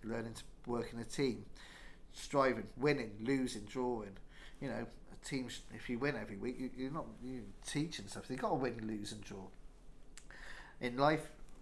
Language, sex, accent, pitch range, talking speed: English, male, British, 115-145 Hz, 175 wpm